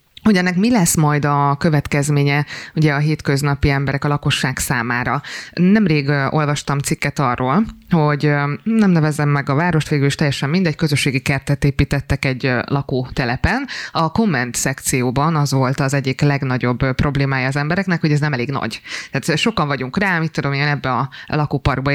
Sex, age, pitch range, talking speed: female, 20-39, 140-155 Hz, 160 wpm